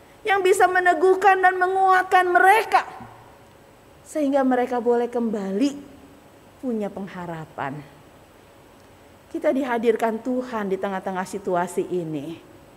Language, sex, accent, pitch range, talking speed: Indonesian, female, native, 180-280 Hz, 90 wpm